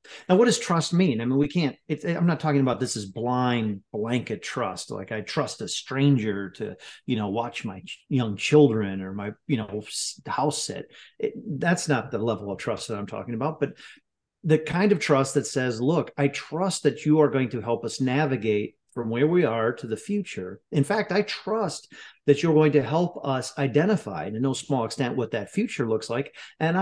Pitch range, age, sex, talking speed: 120-170 Hz, 40-59, male, 205 wpm